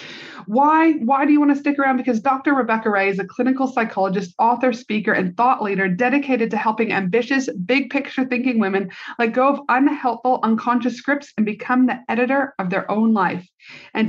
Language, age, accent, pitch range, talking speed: English, 30-49, American, 215-270 Hz, 185 wpm